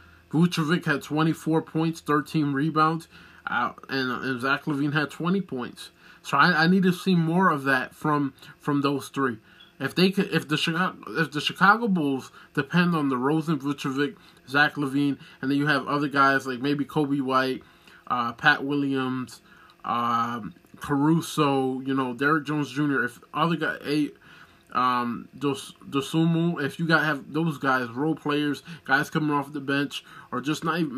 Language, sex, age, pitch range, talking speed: English, male, 20-39, 135-165 Hz, 170 wpm